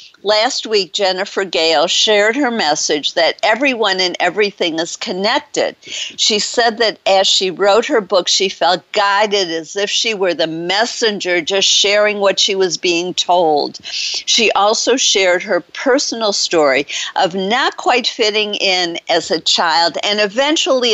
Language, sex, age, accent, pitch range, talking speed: English, female, 50-69, American, 185-240 Hz, 150 wpm